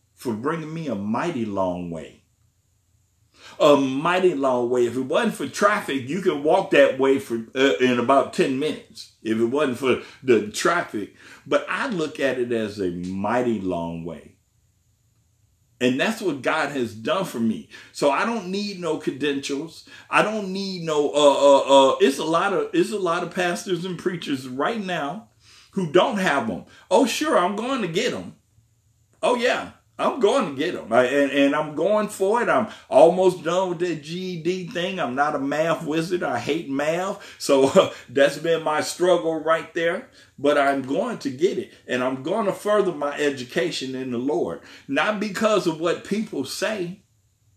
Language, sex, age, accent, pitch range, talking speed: English, male, 50-69, American, 115-180 Hz, 185 wpm